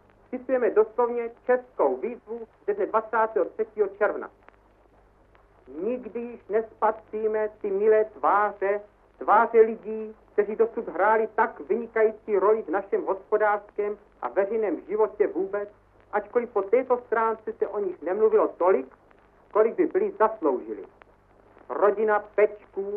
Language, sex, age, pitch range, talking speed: Czech, male, 50-69, 205-230 Hz, 105 wpm